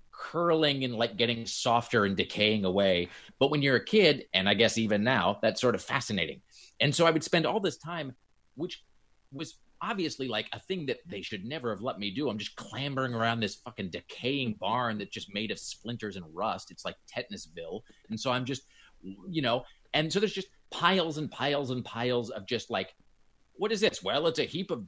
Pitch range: 115-170 Hz